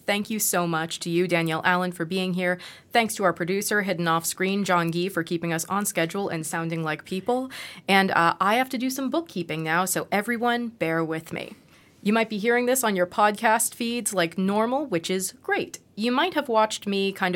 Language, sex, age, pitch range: English, female, 20-39, 165-220 Hz